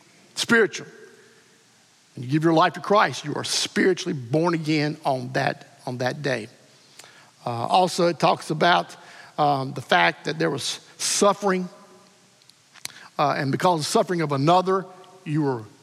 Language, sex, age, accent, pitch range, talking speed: English, male, 50-69, American, 150-195 Hz, 150 wpm